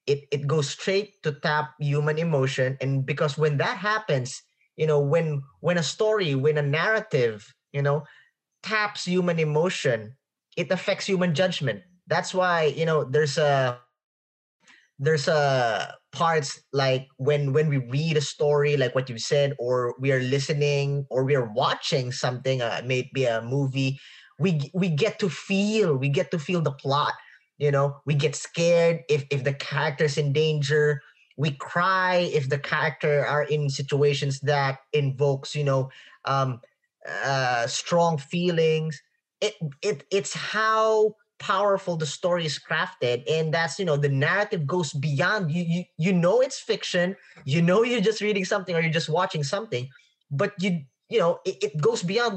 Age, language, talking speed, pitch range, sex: 20-39, English, 165 wpm, 140-185 Hz, male